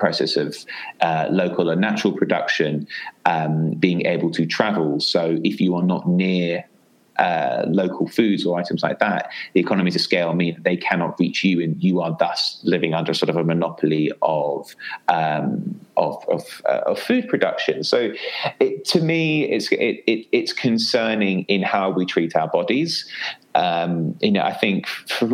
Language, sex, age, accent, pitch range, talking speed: English, male, 30-49, British, 85-115 Hz, 175 wpm